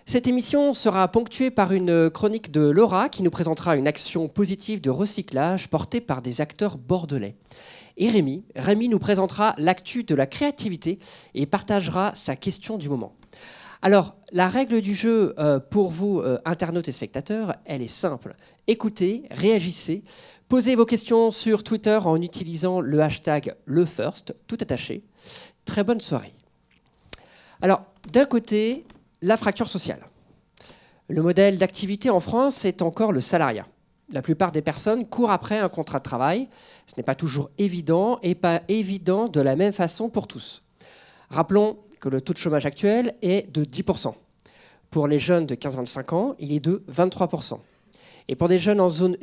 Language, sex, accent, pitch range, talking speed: French, male, French, 160-215 Hz, 160 wpm